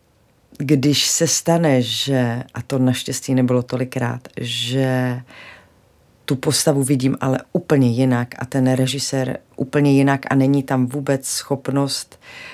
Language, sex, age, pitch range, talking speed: Czech, female, 40-59, 125-140 Hz, 125 wpm